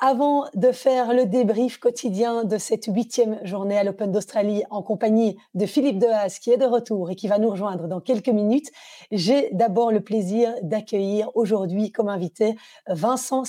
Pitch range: 200-235 Hz